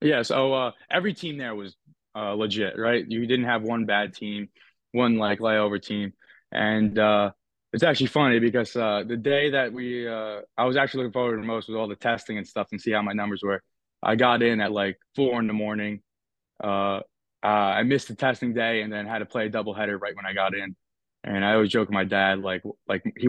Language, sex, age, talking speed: English, male, 20-39, 230 wpm